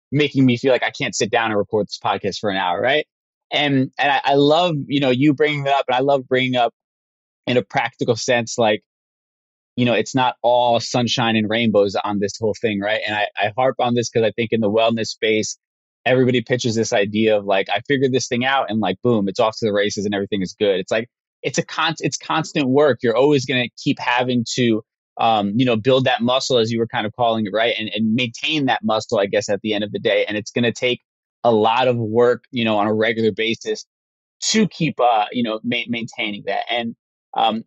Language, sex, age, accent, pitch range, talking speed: English, male, 20-39, American, 110-135 Hz, 245 wpm